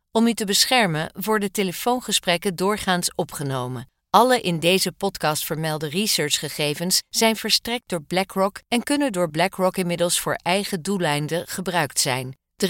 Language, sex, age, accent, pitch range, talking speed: Dutch, female, 50-69, Dutch, 160-210 Hz, 135 wpm